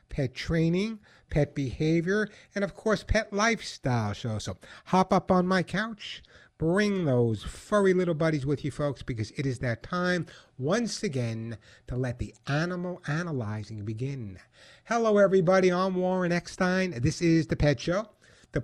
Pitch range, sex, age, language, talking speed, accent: 130-170 Hz, male, 60-79, English, 155 wpm, American